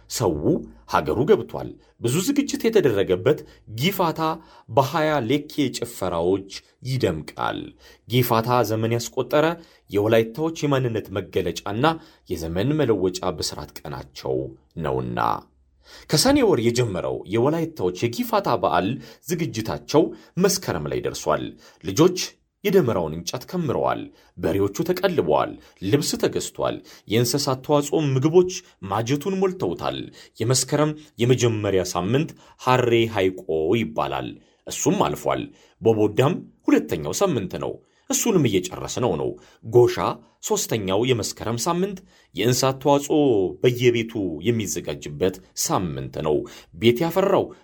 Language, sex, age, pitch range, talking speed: Amharic, male, 40-59, 95-150 Hz, 90 wpm